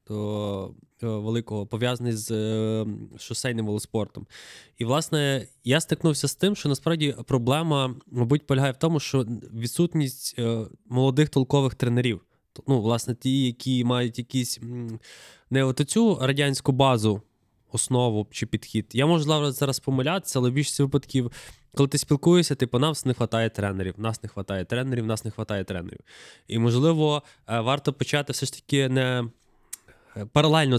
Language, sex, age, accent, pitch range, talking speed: Ukrainian, male, 20-39, native, 110-135 Hz, 140 wpm